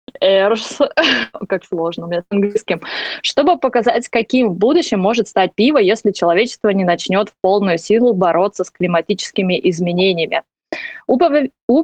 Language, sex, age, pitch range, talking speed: Russian, female, 20-39, 180-230 Hz, 130 wpm